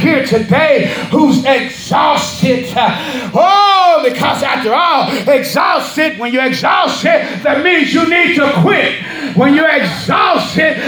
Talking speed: 115 wpm